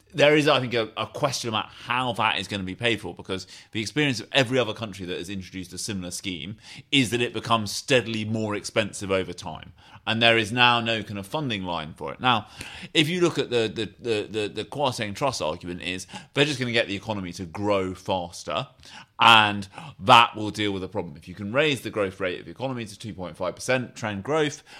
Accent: British